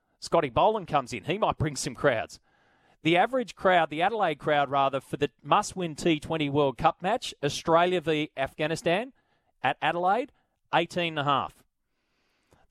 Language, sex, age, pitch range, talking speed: English, male, 30-49, 140-165 Hz, 135 wpm